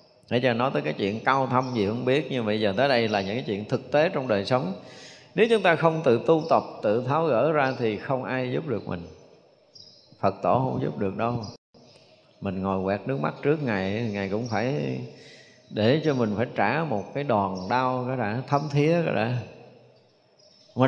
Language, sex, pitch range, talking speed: Vietnamese, male, 115-160 Hz, 215 wpm